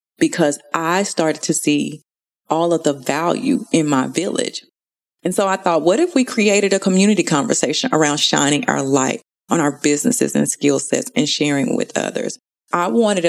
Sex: female